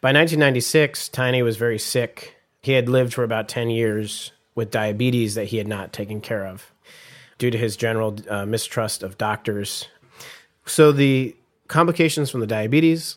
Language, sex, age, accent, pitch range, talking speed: English, male, 30-49, American, 110-130 Hz, 165 wpm